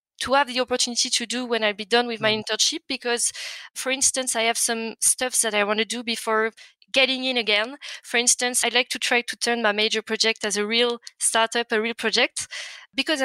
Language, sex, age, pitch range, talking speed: English, female, 20-39, 225-255 Hz, 215 wpm